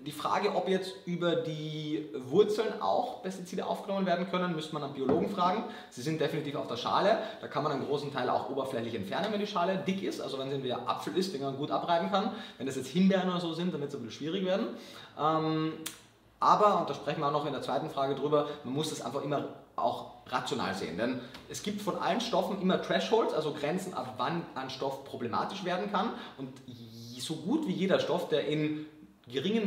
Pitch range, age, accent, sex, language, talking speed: 135-185 Hz, 30-49, German, male, German, 220 wpm